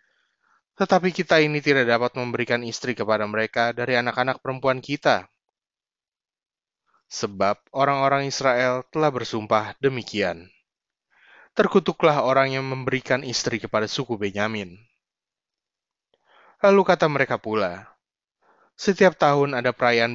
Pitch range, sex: 115-140 Hz, male